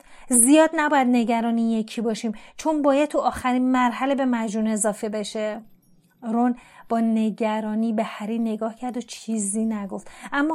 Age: 30-49